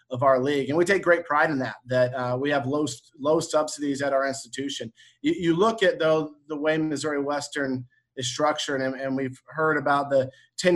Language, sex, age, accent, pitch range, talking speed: English, male, 30-49, American, 130-160 Hz, 210 wpm